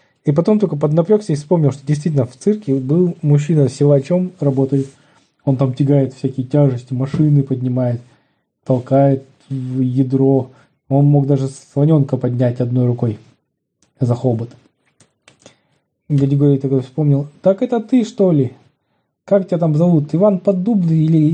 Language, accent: Russian, native